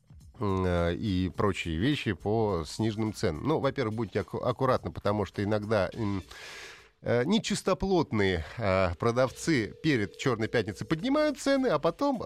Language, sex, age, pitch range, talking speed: Russian, male, 30-49, 95-130 Hz, 115 wpm